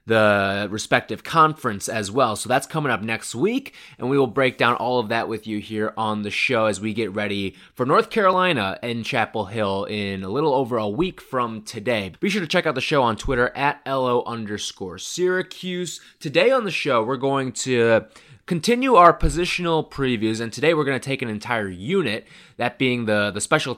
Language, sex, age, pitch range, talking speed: English, male, 20-39, 110-150 Hz, 205 wpm